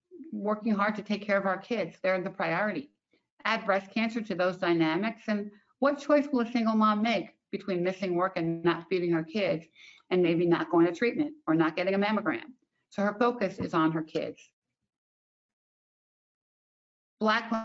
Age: 50-69